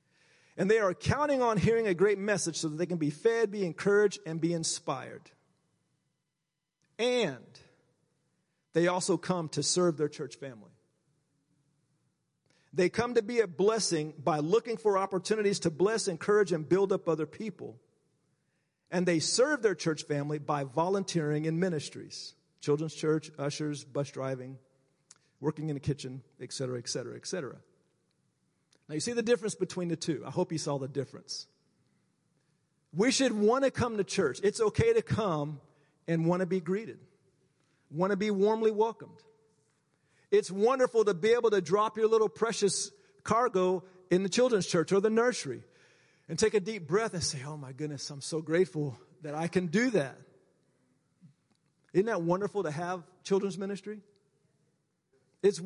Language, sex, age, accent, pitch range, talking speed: English, male, 50-69, American, 150-205 Hz, 160 wpm